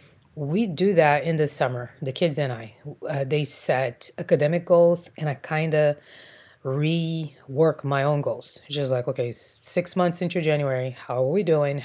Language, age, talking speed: English, 20-39, 175 wpm